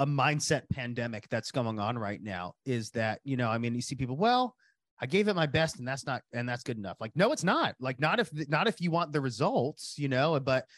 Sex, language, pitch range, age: male, English, 115-150 Hz, 30-49